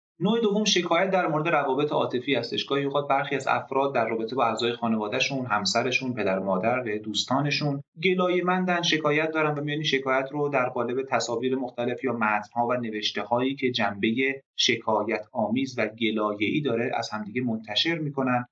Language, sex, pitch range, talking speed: Persian, male, 115-145 Hz, 170 wpm